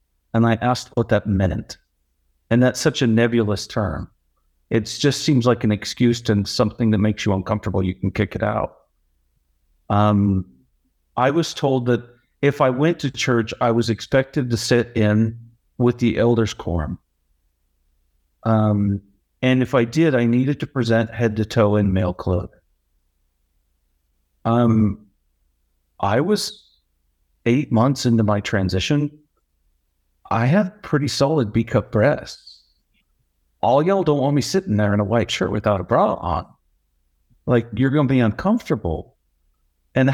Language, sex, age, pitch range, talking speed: English, male, 50-69, 85-130 Hz, 150 wpm